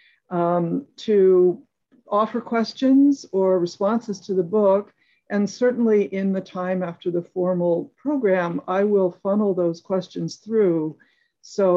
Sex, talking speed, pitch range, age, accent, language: female, 125 wpm, 170-205 Hz, 60-79, American, English